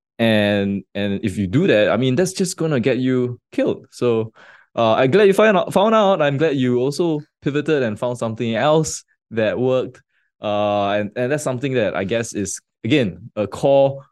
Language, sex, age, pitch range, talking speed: English, male, 20-39, 100-145 Hz, 200 wpm